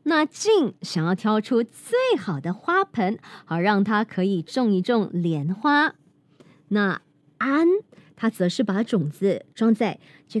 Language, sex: Chinese, male